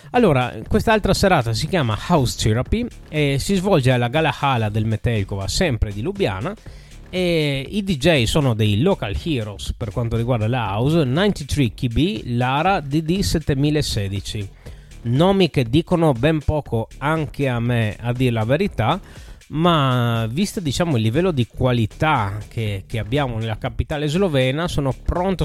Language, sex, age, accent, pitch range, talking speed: Italian, male, 20-39, native, 110-160 Hz, 140 wpm